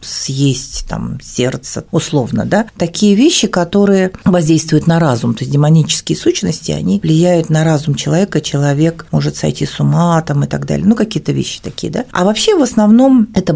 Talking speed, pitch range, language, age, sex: 170 wpm, 135-175 Hz, Russian, 40-59, female